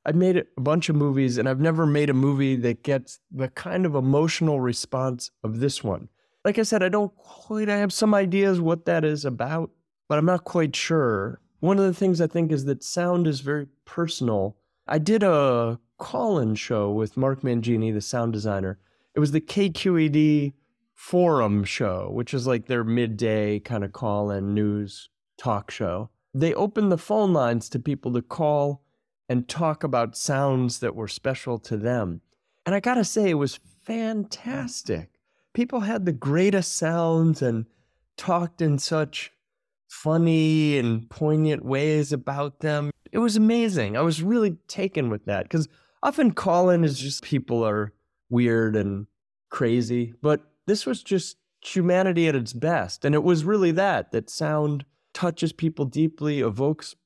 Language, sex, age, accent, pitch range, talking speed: English, male, 20-39, American, 120-175 Hz, 165 wpm